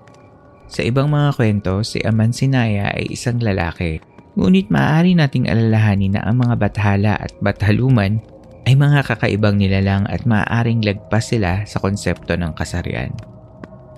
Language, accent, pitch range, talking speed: Filipino, native, 95-115 Hz, 140 wpm